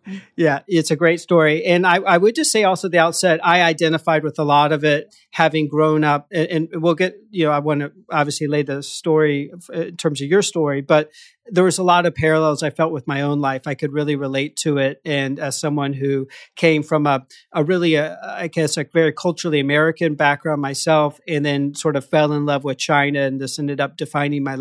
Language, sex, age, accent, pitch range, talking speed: English, male, 40-59, American, 145-170 Hz, 225 wpm